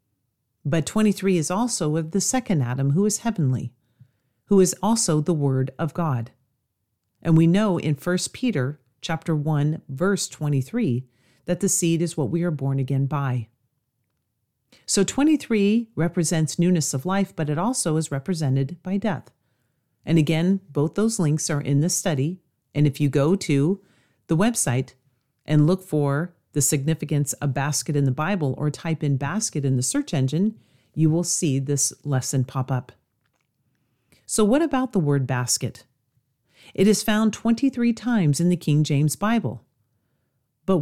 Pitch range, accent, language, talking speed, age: 130-185 Hz, American, English, 160 wpm, 40-59